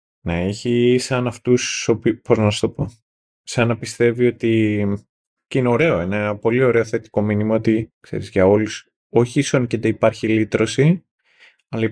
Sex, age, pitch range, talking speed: male, 20-39, 110-130 Hz, 170 wpm